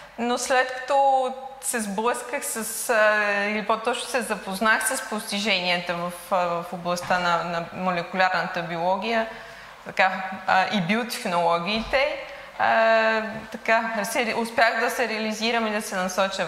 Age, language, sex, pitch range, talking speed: 20-39, Bulgarian, female, 195-235 Hz, 115 wpm